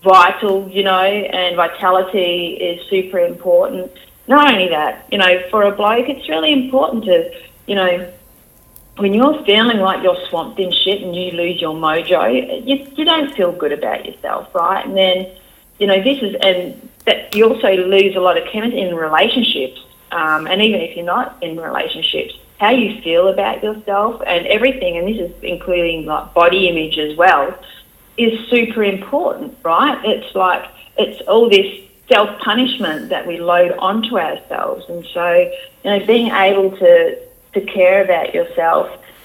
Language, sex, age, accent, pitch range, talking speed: English, female, 30-49, Australian, 175-220 Hz, 170 wpm